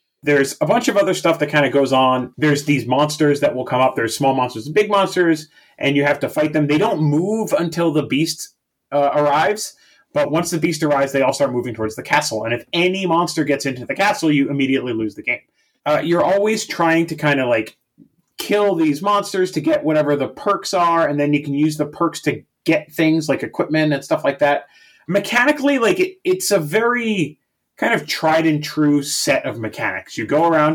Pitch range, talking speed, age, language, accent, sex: 130-165 Hz, 220 wpm, 30-49, English, American, male